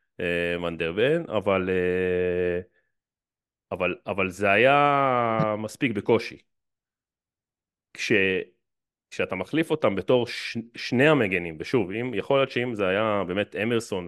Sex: male